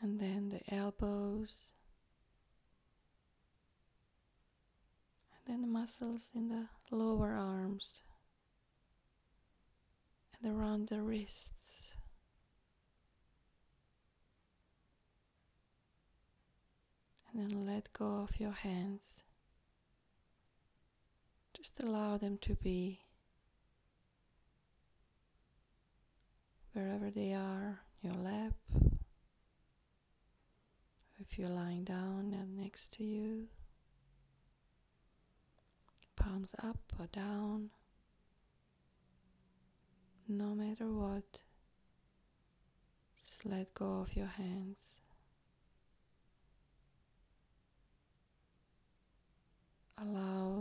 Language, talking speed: English, 65 wpm